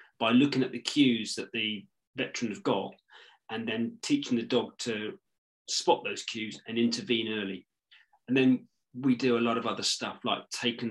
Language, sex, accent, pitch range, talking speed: English, male, British, 115-150 Hz, 180 wpm